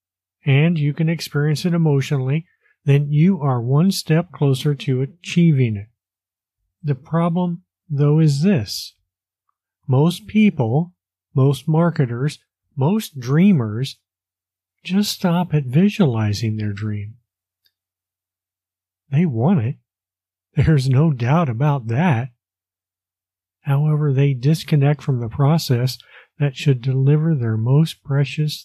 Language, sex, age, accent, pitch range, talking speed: English, male, 40-59, American, 100-155 Hz, 110 wpm